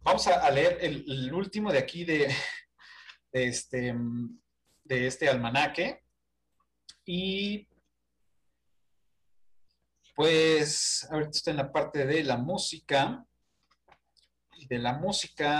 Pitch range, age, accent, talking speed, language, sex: 125-170 Hz, 40-59, Mexican, 95 wpm, Spanish, male